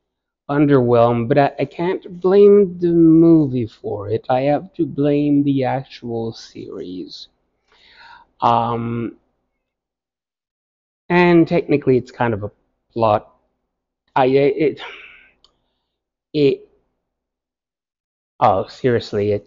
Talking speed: 95 wpm